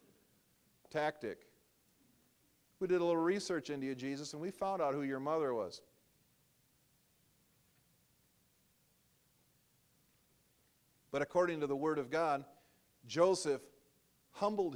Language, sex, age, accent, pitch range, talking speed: English, male, 50-69, American, 125-160 Hz, 105 wpm